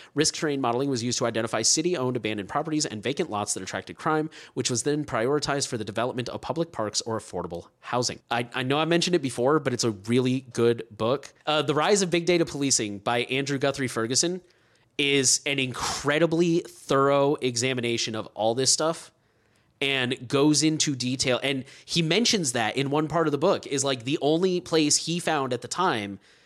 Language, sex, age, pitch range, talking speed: English, male, 30-49, 125-155 Hz, 195 wpm